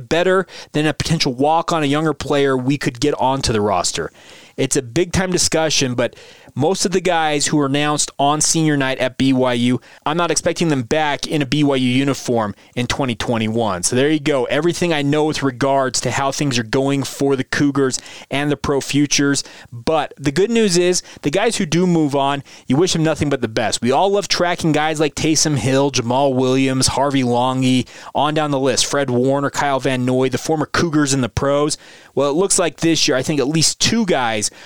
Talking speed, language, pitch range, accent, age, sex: 210 wpm, English, 130-155 Hz, American, 30-49, male